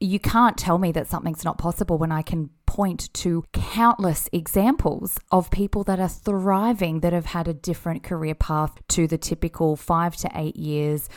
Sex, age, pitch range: female, 20-39, 155-195 Hz